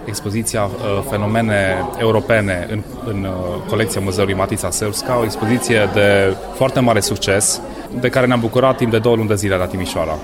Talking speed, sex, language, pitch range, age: 160 wpm, male, Romanian, 100-120 Hz, 20-39